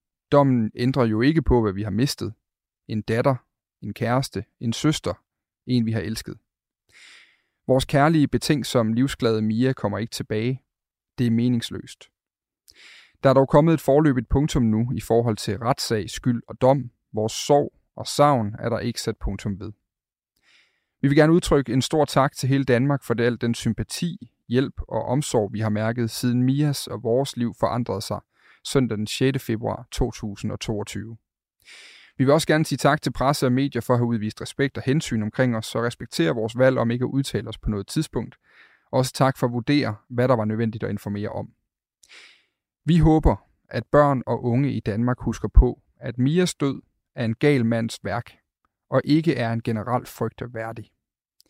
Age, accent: 30-49, native